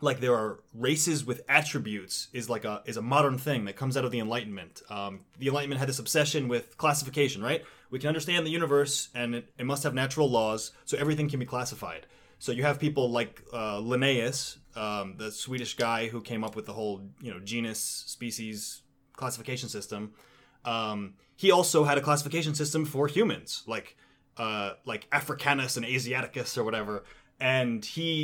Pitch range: 120-145 Hz